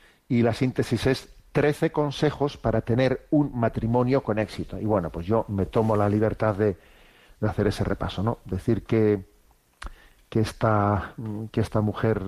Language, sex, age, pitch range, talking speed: Spanish, male, 50-69, 105-120 Hz, 155 wpm